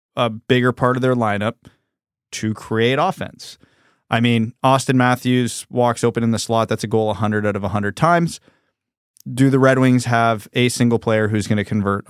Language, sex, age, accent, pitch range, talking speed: English, male, 20-39, American, 115-130 Hz, 200 wpm